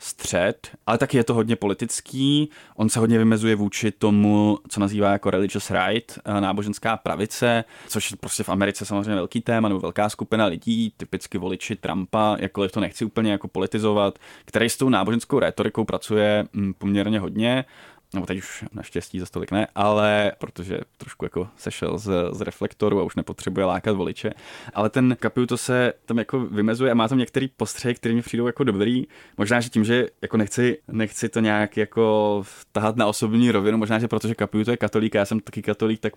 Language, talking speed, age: Czech, 185 wpm, 20-39